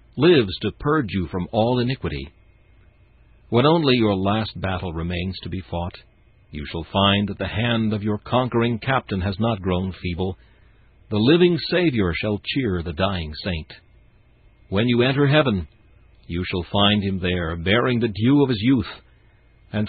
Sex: male